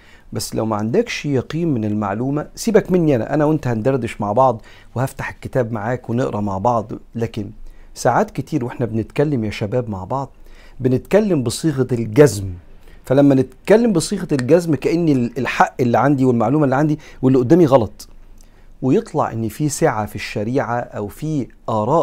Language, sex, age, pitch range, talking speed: Arabic, male, 50-69, 110-150 Hz, 155 wpm